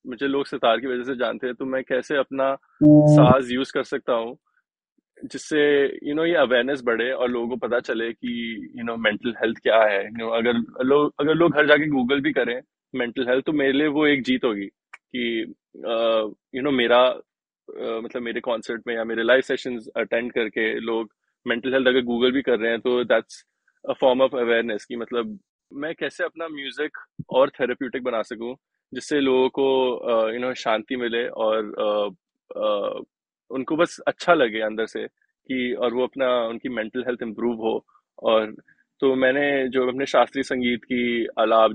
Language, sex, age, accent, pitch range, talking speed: Hindi, male, 20-39, native, 115-135 Hz, 190 wpm